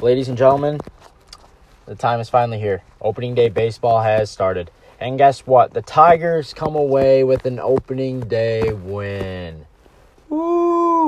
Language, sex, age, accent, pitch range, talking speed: English, male, 20-39, American, 95-120 Hz, 140 wpm